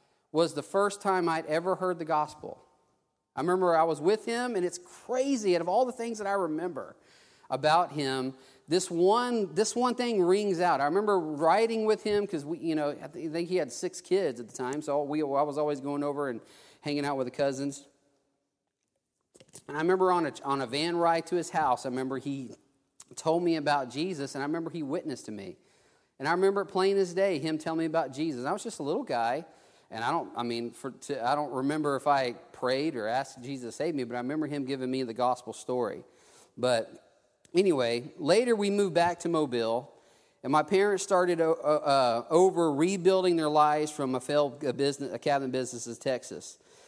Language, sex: English, male